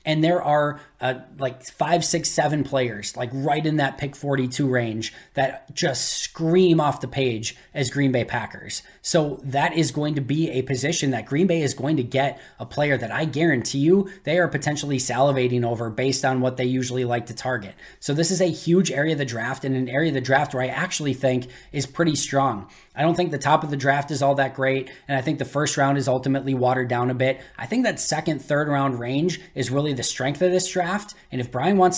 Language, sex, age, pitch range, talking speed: English, male, 20-39, 130-155 Hz, 235 wpm